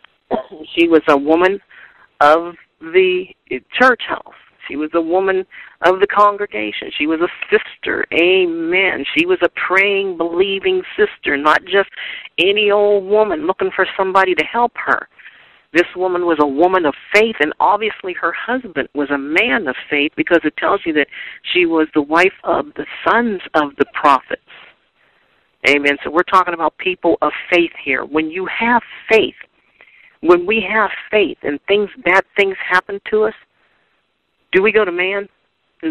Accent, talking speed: American, 160 wpm